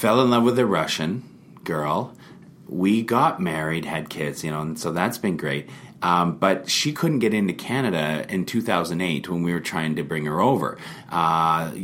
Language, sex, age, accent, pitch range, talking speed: English, male, 40-59, American, 80-100 Hz, 190 wpm